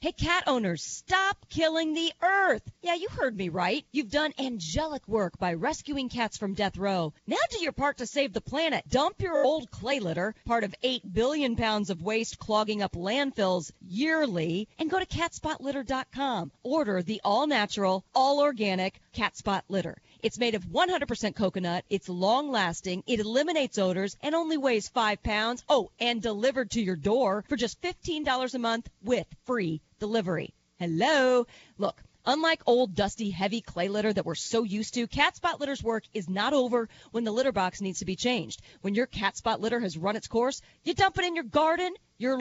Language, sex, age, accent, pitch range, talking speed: English, female, 40-59, American, 205-300 Hz, 185 wpm